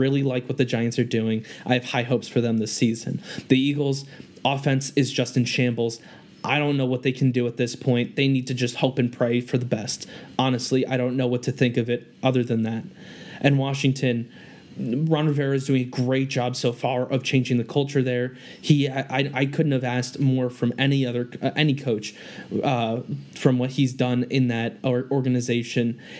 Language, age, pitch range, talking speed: English, 20-39, 120-135 Hz, 210 wpm